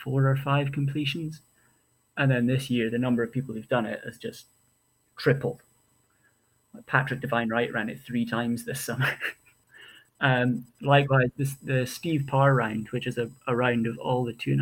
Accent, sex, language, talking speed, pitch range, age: British, male, English, 180 wpm, 120-140 Hz, 30-49